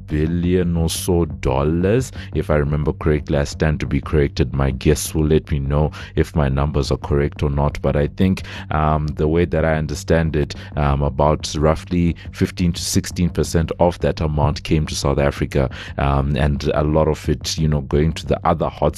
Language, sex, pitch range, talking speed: English, male, 75-90 Hz, 200 wpm